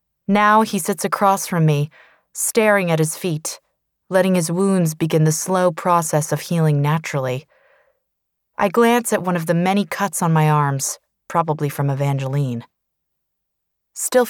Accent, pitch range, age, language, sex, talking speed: American, 150-195 Hz, 20-39, English, female, 145 wpm